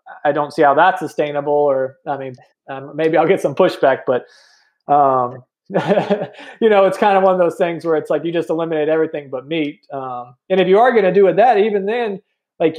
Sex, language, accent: male, English, American